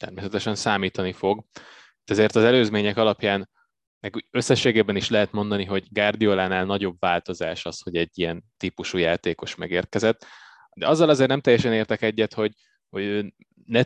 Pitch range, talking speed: 95-110 Hz, 145 wpm